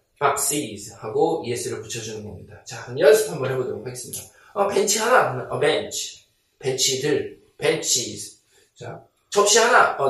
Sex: male